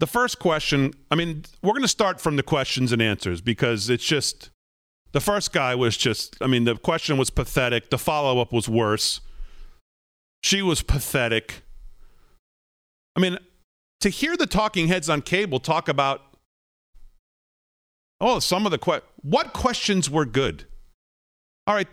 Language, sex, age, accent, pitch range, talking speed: English, male, 40-59, American, 120-180 Hz, 155 wpm